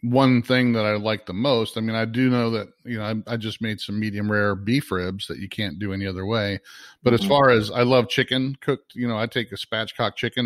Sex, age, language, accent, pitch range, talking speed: male, 40-59, English, American, 100-120 Hz, 265 wpm